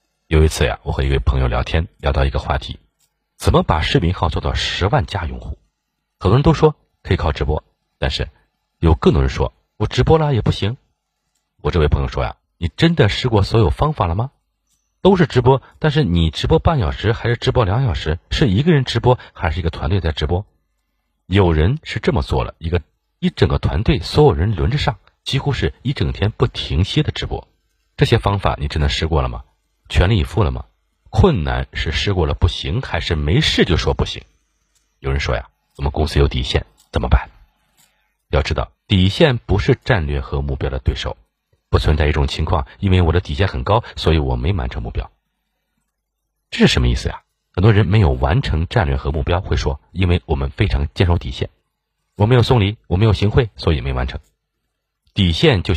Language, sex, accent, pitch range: Chinese, male, native, 75-110 Hz